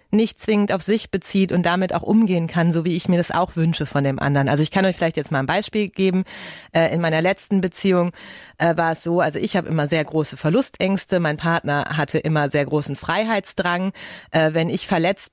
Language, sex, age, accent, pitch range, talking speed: German, female, 30-49, German, 165-210 Hz, 210 wpm